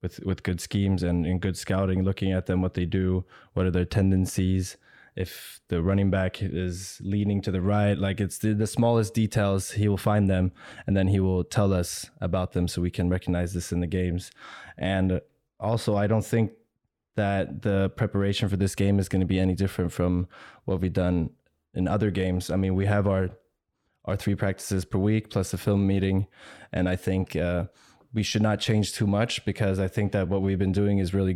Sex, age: male, 20-39